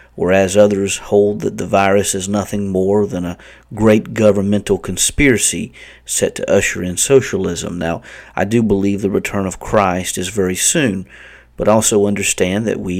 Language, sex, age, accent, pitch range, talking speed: English, male, 50-69, American, 95-110 Hz, 160 wpm